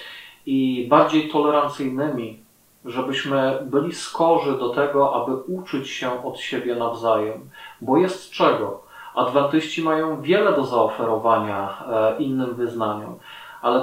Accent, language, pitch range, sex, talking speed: native, Polish, 125-145 Hz, male, 110 wpm